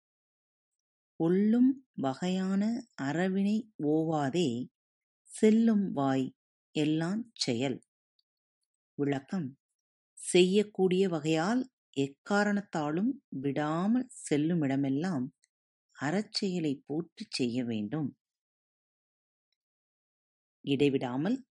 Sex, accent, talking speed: female, native, 45 wpm